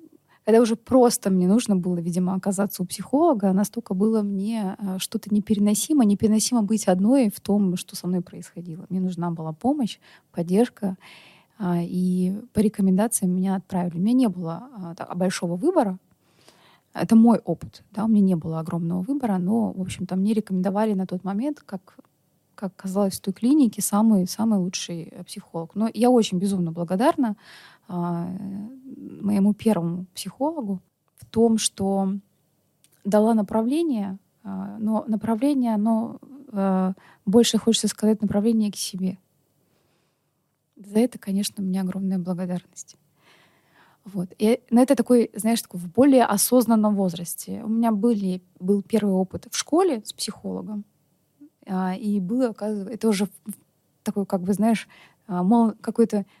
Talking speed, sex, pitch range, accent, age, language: 135 wpm, female, 185-225 Hz, native, 20-39, Russian